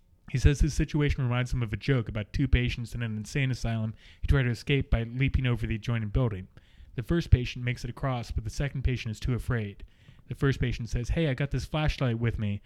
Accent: American